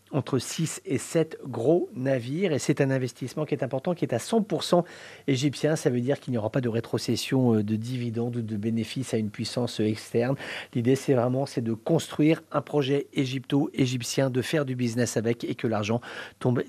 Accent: French